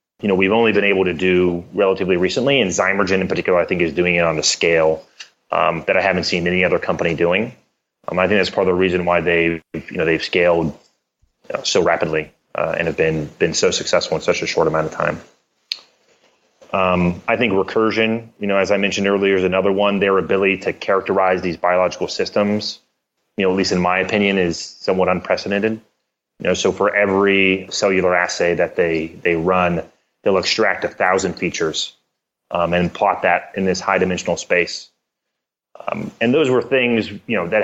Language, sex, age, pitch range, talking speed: English, male, 30-49, 90-100 Hz, 200 wpm